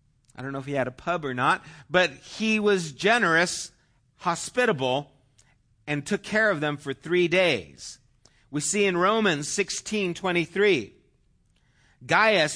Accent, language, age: American, English, 50-69